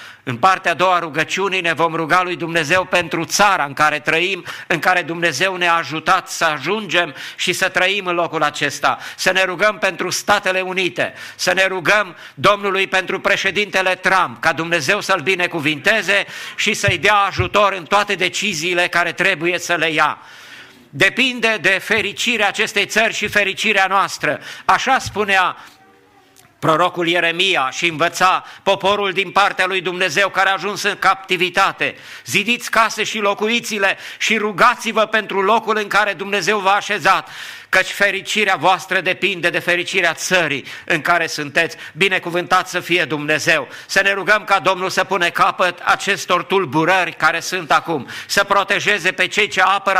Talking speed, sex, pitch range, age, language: 155 wpm, male, 175-205 Hz, 50-69, English